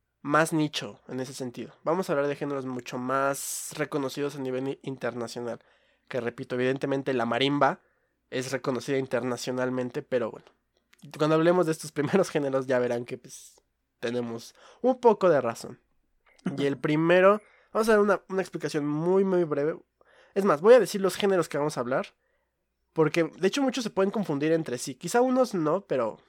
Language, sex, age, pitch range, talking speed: Spanish, male, 20-39, 130-165 Hz, 175 wpm